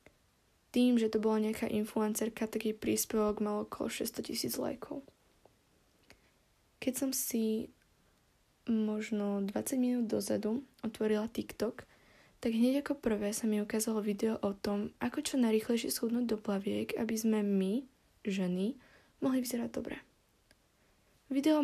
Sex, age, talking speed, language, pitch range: female, 10-29, 130 wpm, Slovak, 210-235 Hz